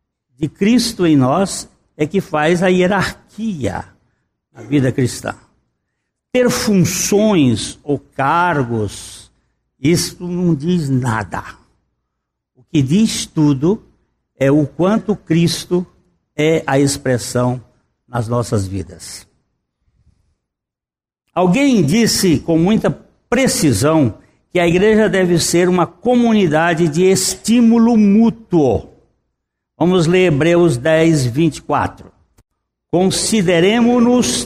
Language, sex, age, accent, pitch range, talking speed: Portuguese, male, 60-79, Brazilian, 135-200 Hz, 95 wpm